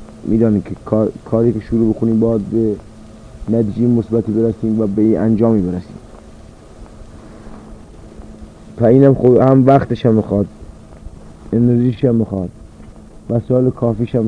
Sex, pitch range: male, 110-120 Hz